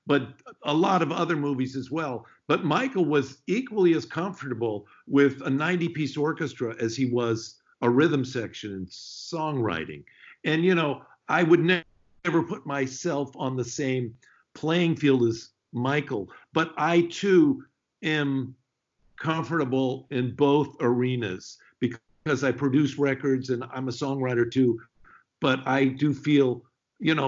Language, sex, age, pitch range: English, male, 50-69, 115-145 Hz